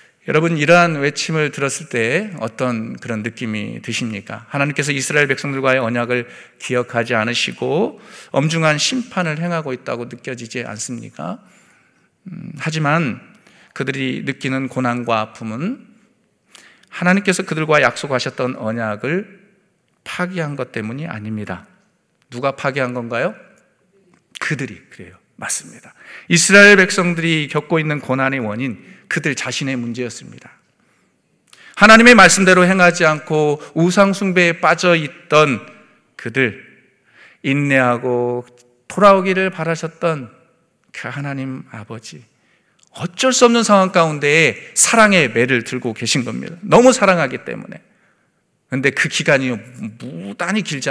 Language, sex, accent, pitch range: Korean, male, native, 125-175 Hz